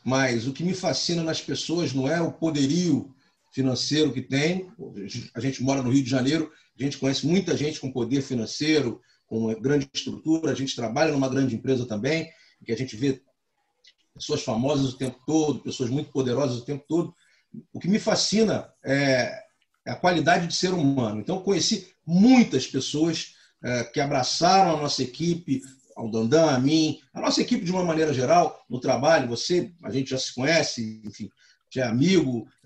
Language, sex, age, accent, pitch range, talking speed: Portuguese, male, 40-59, Brazilian, 135-180 Hz, 180 wpm